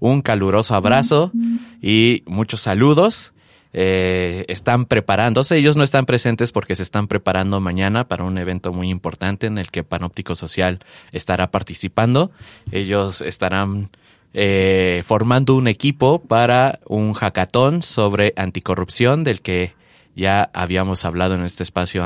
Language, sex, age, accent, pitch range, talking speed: English, male, 30-49, Mexican, 95-120 Hz, 135 wpm